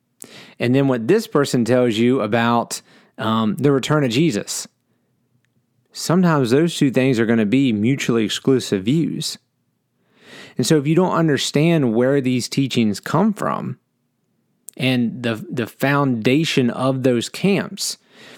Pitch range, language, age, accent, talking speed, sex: 105-130 Hz, English, 30-49, American, 135 wpm, male